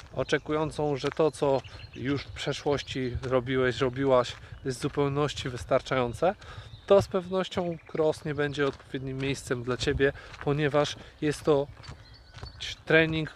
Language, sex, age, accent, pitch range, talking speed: Polish, male, 20-39, native, 130-160 Hz, 120 wpm